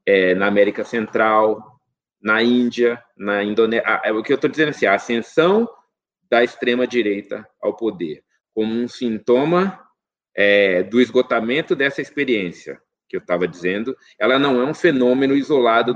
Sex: male